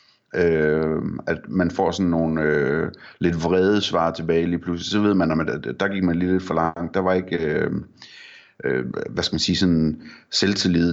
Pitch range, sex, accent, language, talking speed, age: 85-95 Hz, male, native, Danish, 190 wpm, 30-49